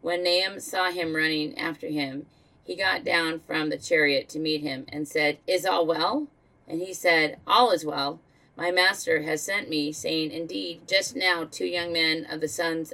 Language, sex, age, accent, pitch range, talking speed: English, female, 40-59, American, 150-175 Hz, 195 wpm